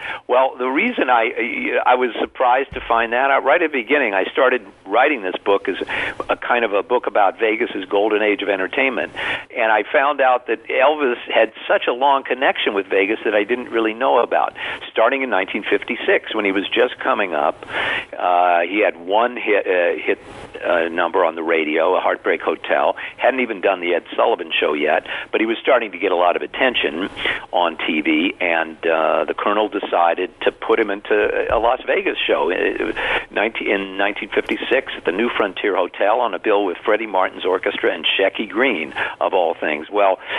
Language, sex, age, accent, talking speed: English, male, 50-69, American, 195 wpm